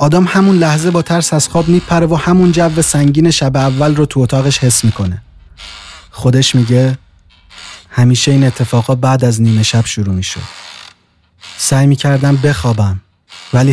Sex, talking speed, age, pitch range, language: male, 150 wpm, 30-49, 95-135 Hz, Persian